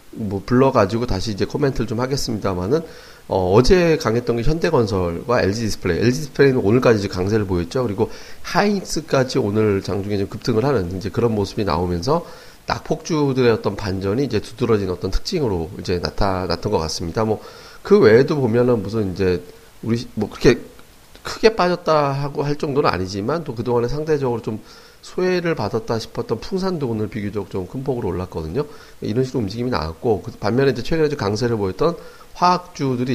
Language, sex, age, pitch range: Korean, male, 40-59, 100-135 Hz